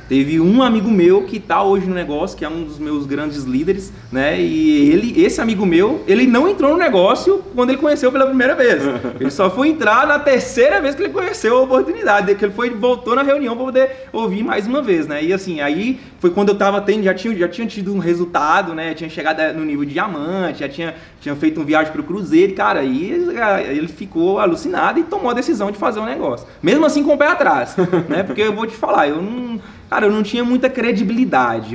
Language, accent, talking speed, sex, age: Portuguese, Brazilian, 225 wpm, male, 20-39